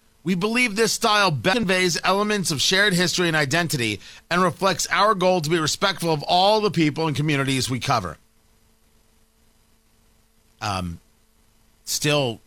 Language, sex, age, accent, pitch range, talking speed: English, male, 40-59, American, 130-200 Hz, 135 wpm